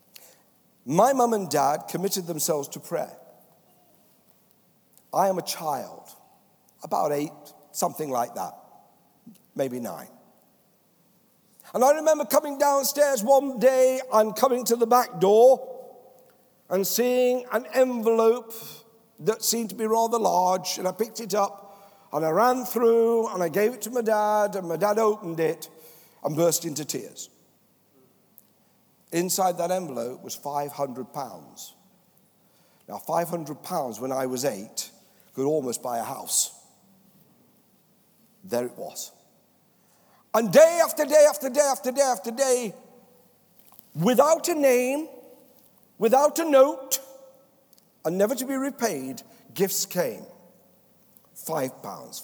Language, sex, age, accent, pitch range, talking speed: English, male, 60-79, British, 175-255 Hz, 130 wpm